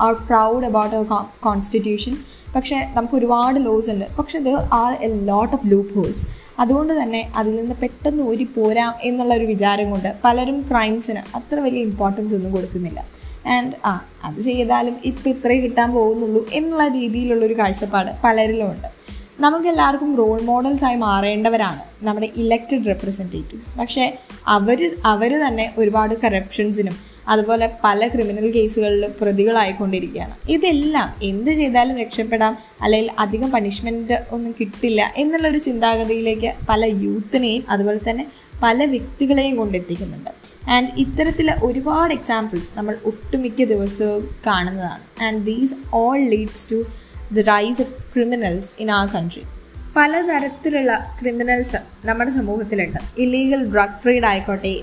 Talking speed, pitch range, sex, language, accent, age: 130 wpm, 210-250 Hz, female, Malayalam, native, 20-39